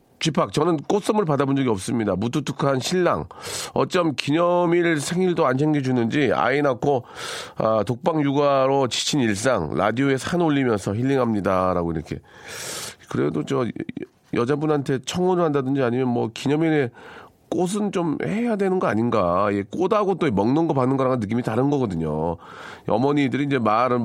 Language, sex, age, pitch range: Korean, male, 40-59, 120-160 Hz